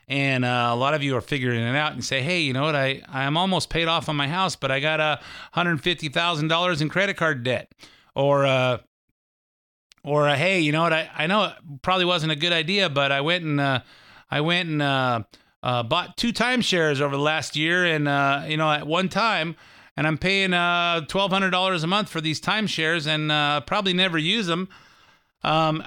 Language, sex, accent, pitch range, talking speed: English, male, American, 120-160 Hz, 225 wpm